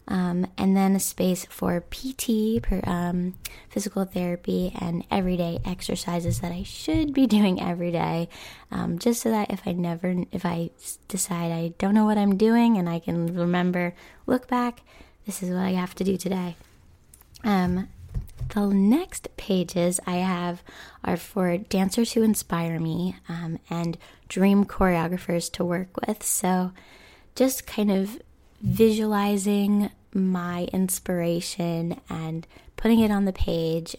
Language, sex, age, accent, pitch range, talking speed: English, female, 10-29, American, 175-205 Hz, 145 wpm